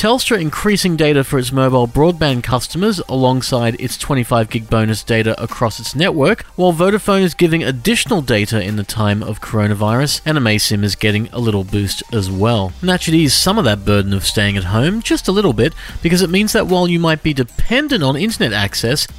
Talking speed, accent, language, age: 205 wpm, Australian, English, 30-49